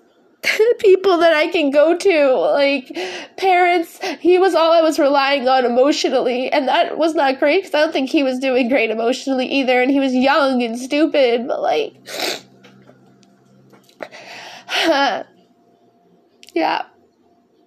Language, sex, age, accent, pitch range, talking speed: English, female, 20-39, American, 225-315 Hz, 135 wpm